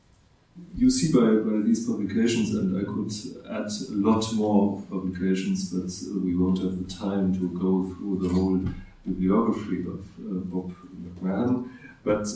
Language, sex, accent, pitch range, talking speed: German, male, German, 95-115 Hz, 150 wpm